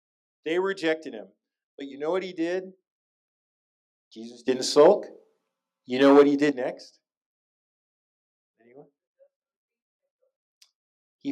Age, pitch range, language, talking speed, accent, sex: 40-59, 120-165 Hz, English, 105 wpm, American, male